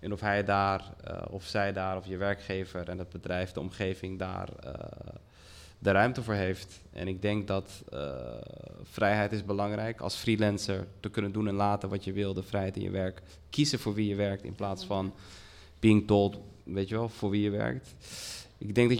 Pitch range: 95-110 Hz